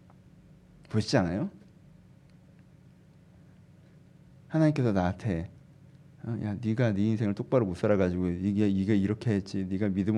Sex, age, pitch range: male, 40-59, 105-165 Hz